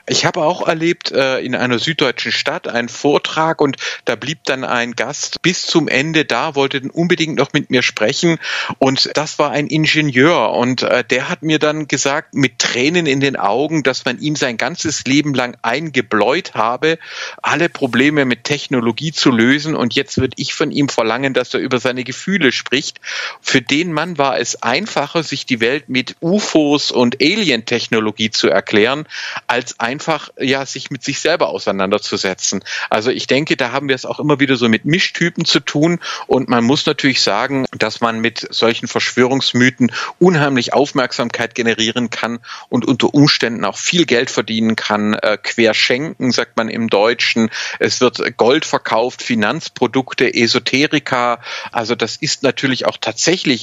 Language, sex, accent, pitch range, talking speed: German, male, German, 120-150 Hz, 165 wpm